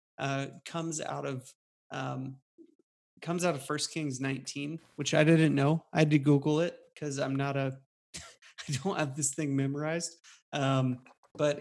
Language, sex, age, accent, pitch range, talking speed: English, male, 30-49, American, 135-160 Hz, 165 wpm